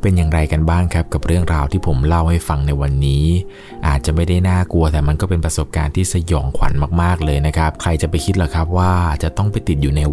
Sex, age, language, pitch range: male, 20-39, Thai, 75-95 Hz